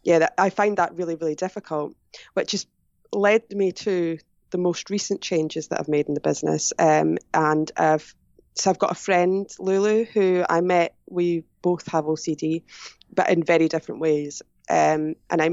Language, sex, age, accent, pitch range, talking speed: English, female, 20-39, British, 155-180 Hz, 180 wpm